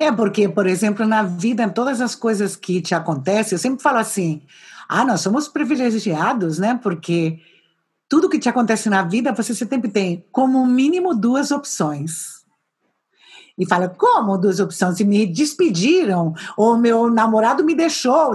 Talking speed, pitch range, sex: 160 wpm, 195-260 Hz, female